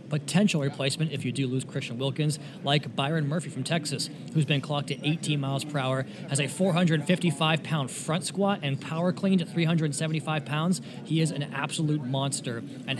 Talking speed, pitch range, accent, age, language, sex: 180 wpm, 135-155 Hz, American, 20-39, English, male